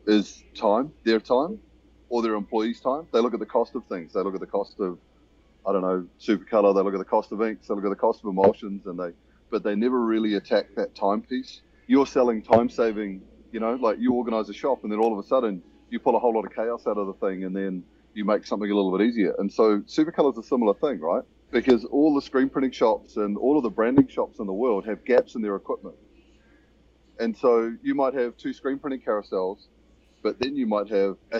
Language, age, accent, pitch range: English, 30-49, Australian, 100-125 Hz